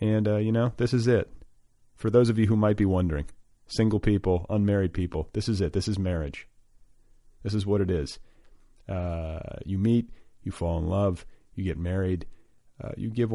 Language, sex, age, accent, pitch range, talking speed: English, male, 40-59, American, 90-115 Hz, 195 wpm